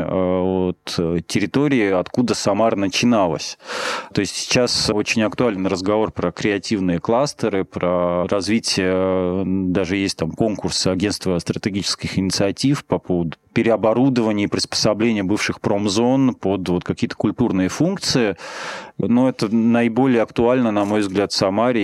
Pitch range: 95-115 Hz